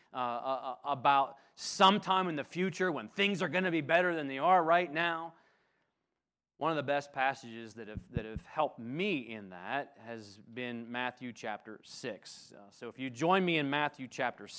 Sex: male